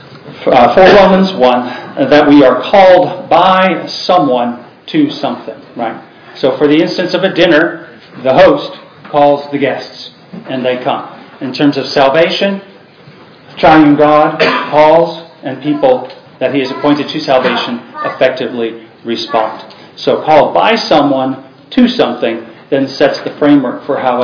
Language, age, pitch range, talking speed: English, 40-59, 135-170 Hz, 140 wpm